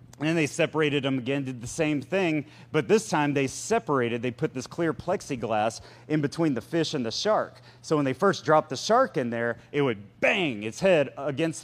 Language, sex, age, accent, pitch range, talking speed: English, male, 30-49, American, 125-165 Hz, 210 wpm